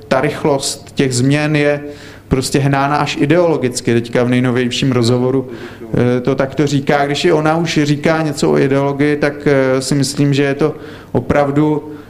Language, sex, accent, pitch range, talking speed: Czech, male, native, 130-150 Hz, 155 wpm